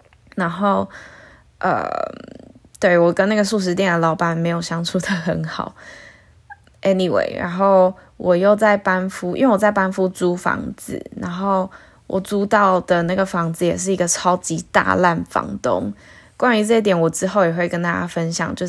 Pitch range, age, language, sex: 170-195 Hz, 20-39, Chinese, female